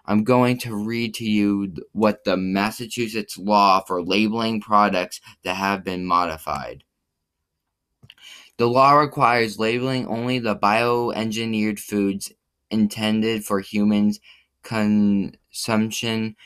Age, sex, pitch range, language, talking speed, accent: 20-39, male, 100-115 Hz, English, 105 wpm, American